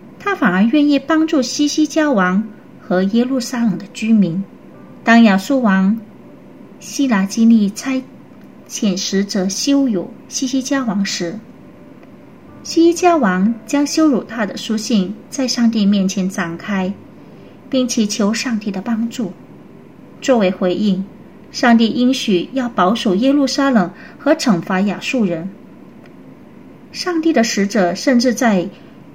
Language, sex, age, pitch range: Indonesian, female, 30-49, 195-260 Hz